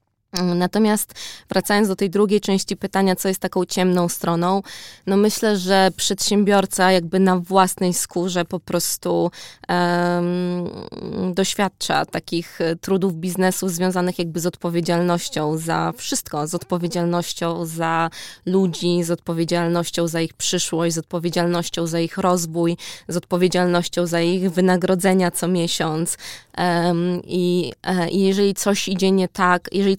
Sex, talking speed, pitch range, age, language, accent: female, 125 wpm, 170-195 Hz, 20-39, Polish, native